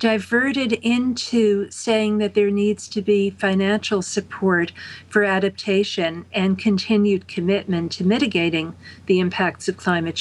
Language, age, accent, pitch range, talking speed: English, 50-69, American, 170-210 Hz, 125 wpm